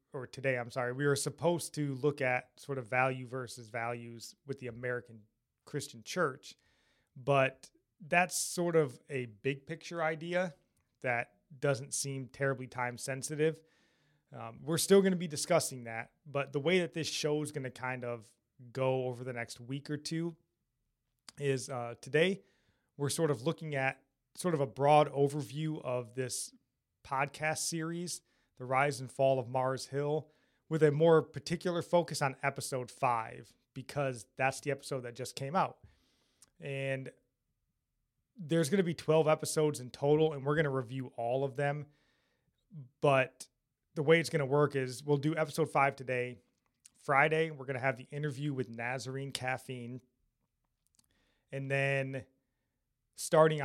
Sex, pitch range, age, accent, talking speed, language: male, 125-150 Hz, 30-49, American, 160 wpm, English